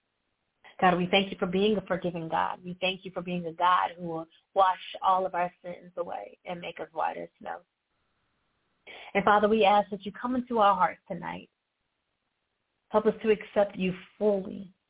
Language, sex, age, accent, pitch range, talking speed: English, female, 30-49, American, 175-195 Hz, 190 wpm